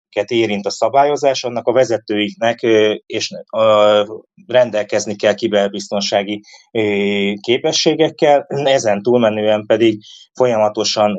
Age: 20-39